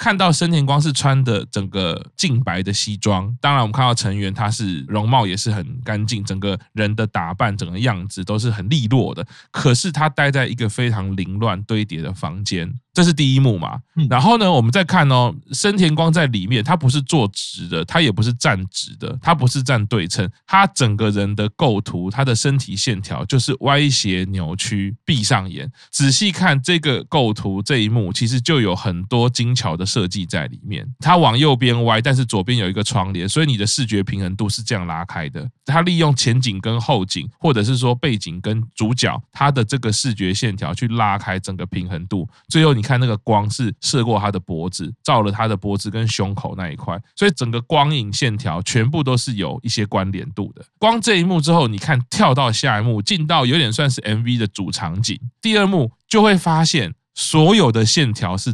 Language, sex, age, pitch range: Chinese, male, 20-39, 105-140 Hz